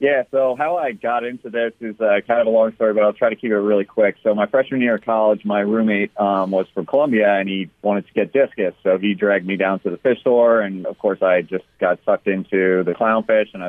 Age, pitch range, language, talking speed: 30-49, 95-120 Hz, English, 265 wpm